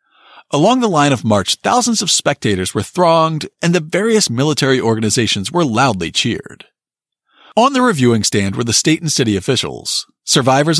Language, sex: English, male